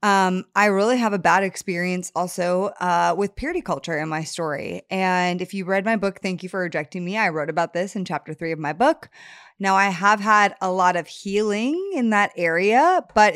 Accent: American